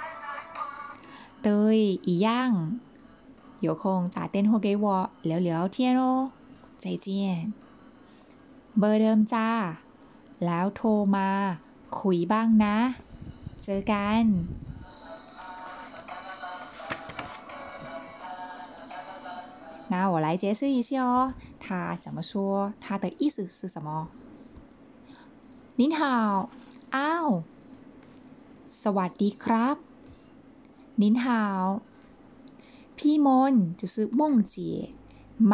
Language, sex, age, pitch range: Chinese, female, 20-39, 195-265 Hz